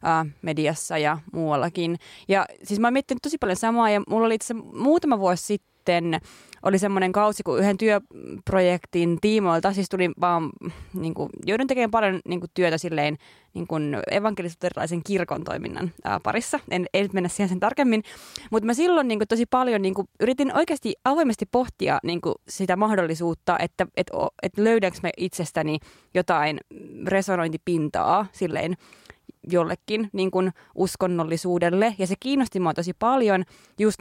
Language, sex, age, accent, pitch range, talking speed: Finnish, female, 20-39, native, 175-220 Hz, 155 wpm